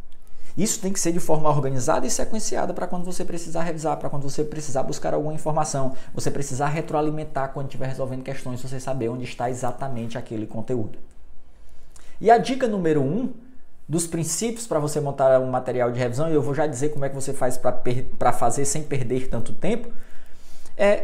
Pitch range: 120-160 Hz